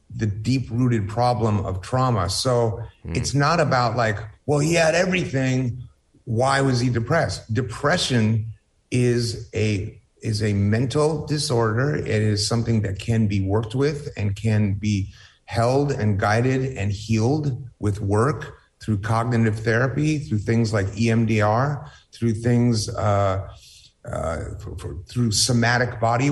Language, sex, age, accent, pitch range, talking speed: English, male, 30-49, American, 105-125 Hz, 130 wpm